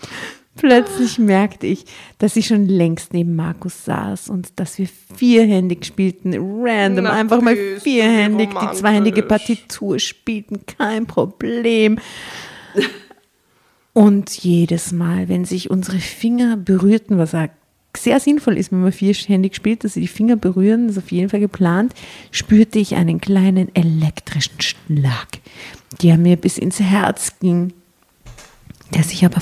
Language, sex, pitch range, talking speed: German, female, 170-210 Hz, 135 wpm